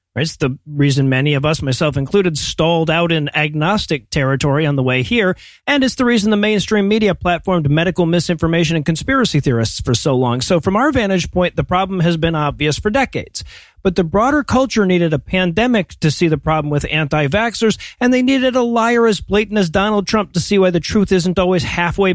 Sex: male